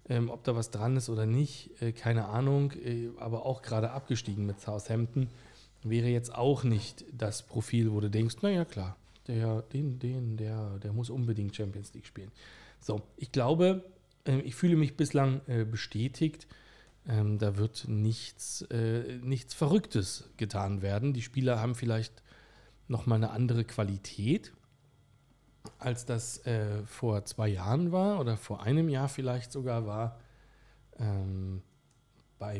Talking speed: 135 wpm